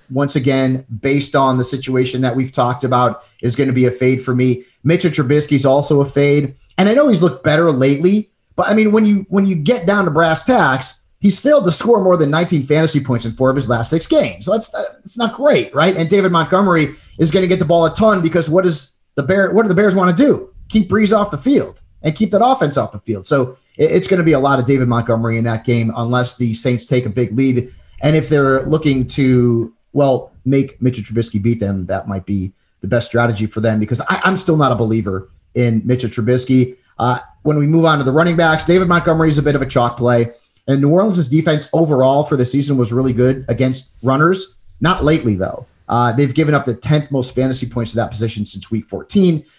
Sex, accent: male, American